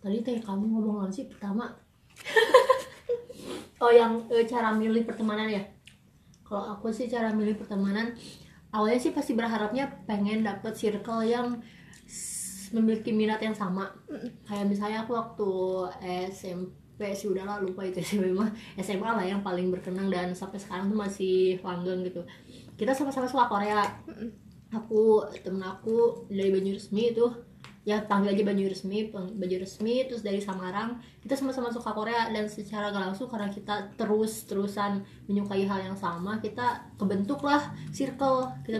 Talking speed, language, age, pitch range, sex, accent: 145 wpm, Indonesian, 20-39, 195-230 Hz, female, native